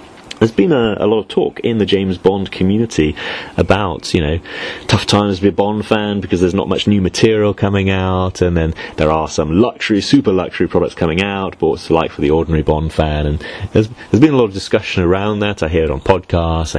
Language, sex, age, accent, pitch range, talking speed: English, male, 30-49, British, 80-100 Hz, 230 wpm